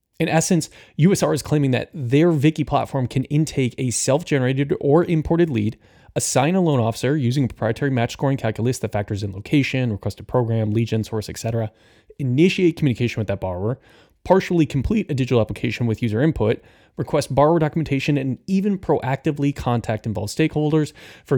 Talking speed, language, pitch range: 170 wpm, English, 115-150 Hz